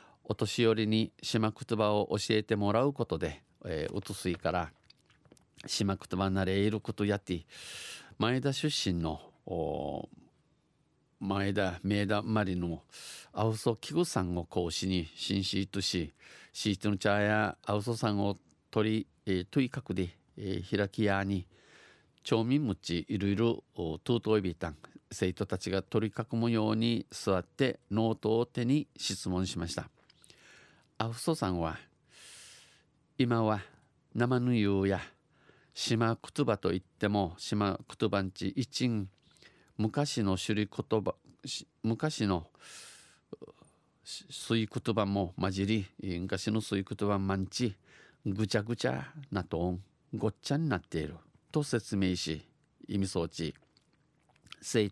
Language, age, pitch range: Japanese, 50-69, 95-115 Hz